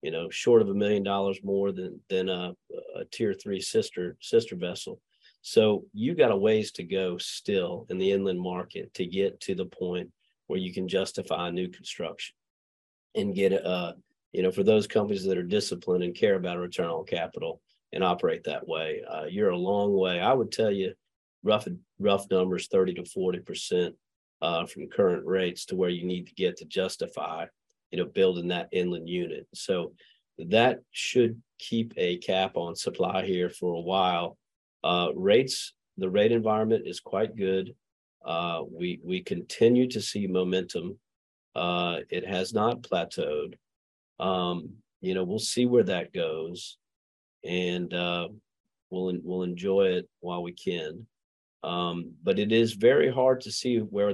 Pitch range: 90-105 Hz